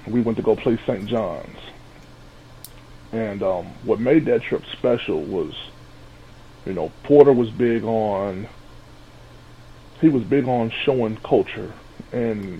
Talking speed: 135 wpm